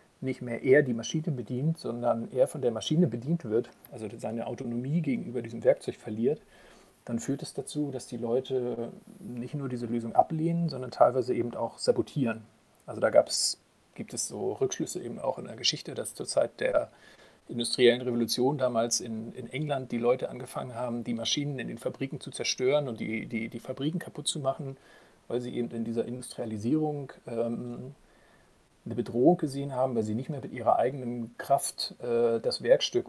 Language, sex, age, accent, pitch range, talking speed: German, male, 40-59, German, 120-150 Hz, 185 wpm